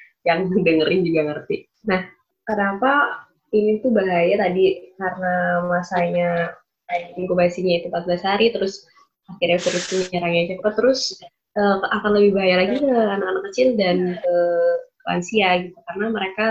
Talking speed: 135 wpm